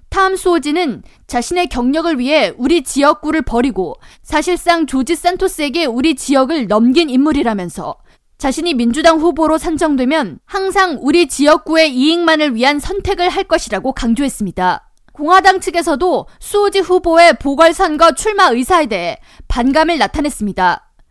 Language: Korean